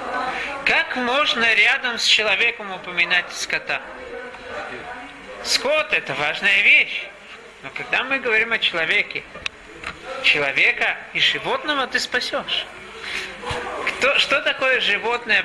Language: Russian